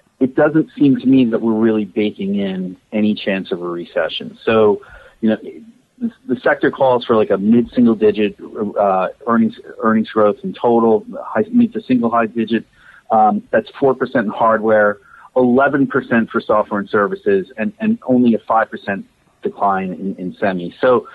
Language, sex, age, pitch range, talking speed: English, male, 40-59, 105-135 Hz, 175 wpm